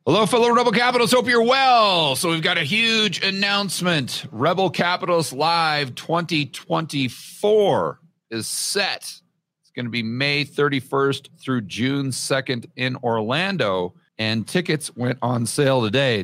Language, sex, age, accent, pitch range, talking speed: English, male, 40-59, American, 110-155 Hz, 130 wpm